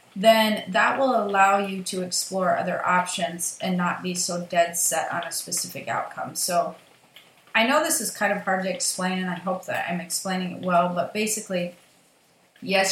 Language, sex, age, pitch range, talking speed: English, female, 30-49, 175-190 Hz, 185 wpm